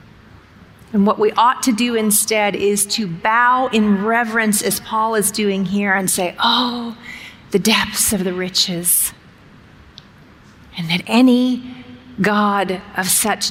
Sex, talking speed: female, 140 wpm